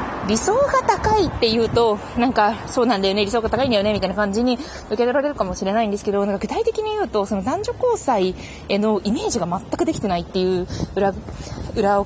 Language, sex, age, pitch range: Japanese, female, 20-39, 190-285 Hz